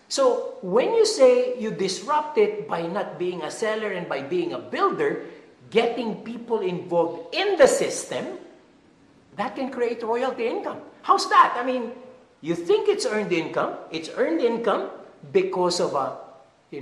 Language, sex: English, male